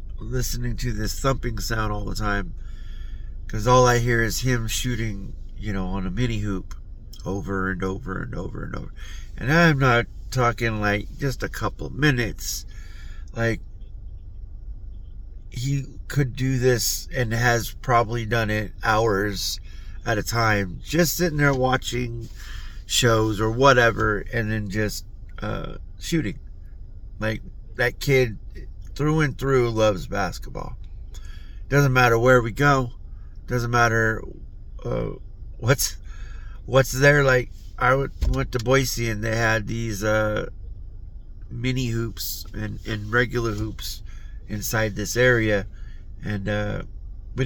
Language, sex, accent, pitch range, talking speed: English, male, American, 95-120 Hz, 135 wpm